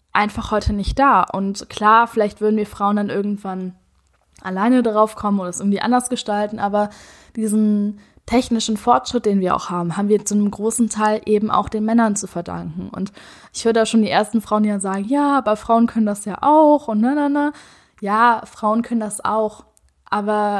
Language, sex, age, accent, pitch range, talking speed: German, female, 10-29, German, 200-225 Hz, 195 wpm